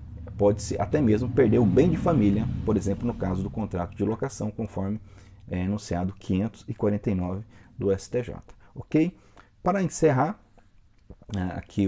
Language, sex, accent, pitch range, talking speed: Portuguese, male, Brazilian, 90-120 Hz, 135 wpm